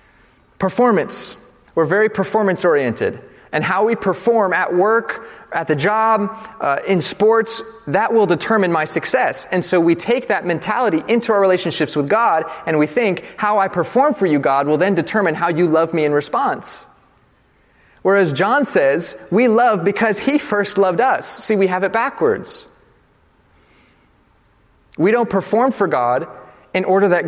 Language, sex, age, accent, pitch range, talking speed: English, male, 30-49, American, 165-215 Hz, 160 wpm